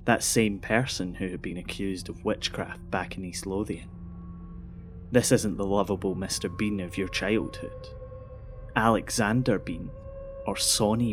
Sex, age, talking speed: male, 20-39, 140 wpm